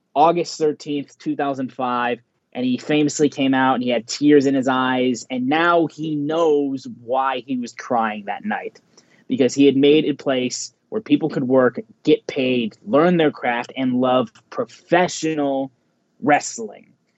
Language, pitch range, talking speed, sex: English, 125-155 Hz, 155 wpm, male